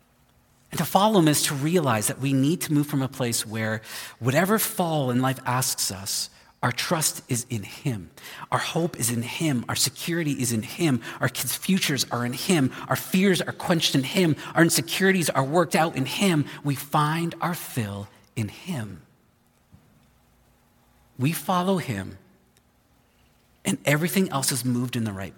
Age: 40-59